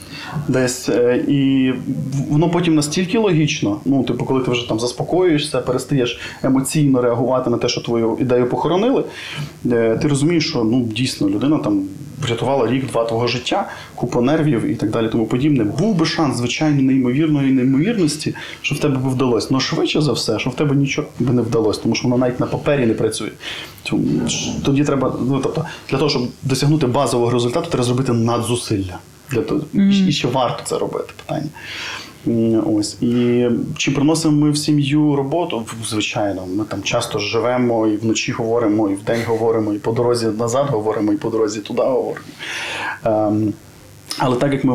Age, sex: 20-39, male